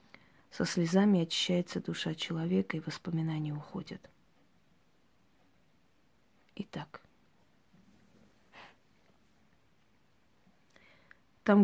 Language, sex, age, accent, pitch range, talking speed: Russian, female, 20-39, native, 160-185 Hz, 50 wpm